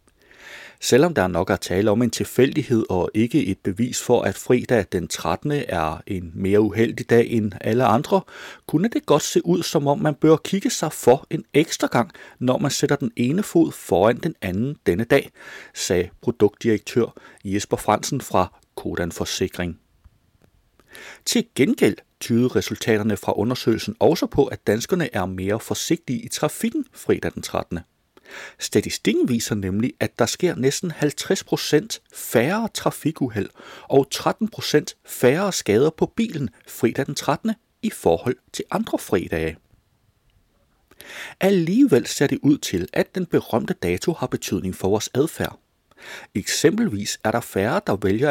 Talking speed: 150 wpm